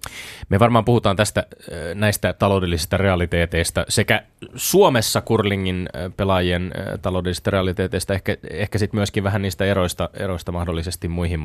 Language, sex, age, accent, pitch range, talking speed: Finnish, male, 20-39, native, 85-105 Hz, 120 wpm